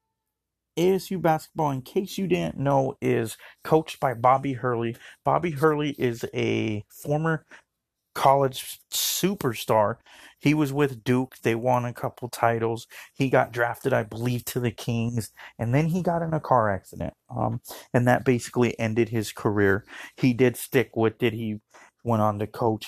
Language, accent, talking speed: English, American, 160 wpm